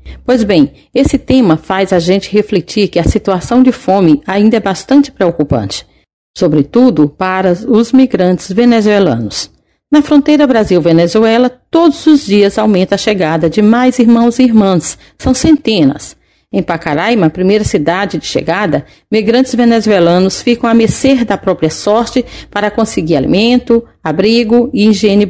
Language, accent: Portuguese, Brazilian